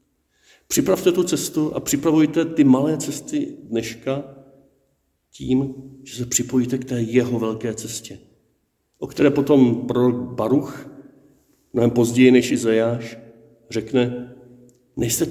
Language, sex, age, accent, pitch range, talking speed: Czech, male, 50-69, native, 115-135 Hz, 115 wpm